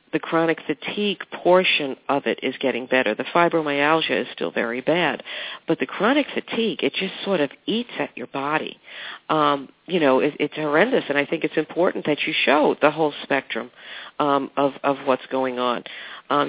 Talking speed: 185 wpm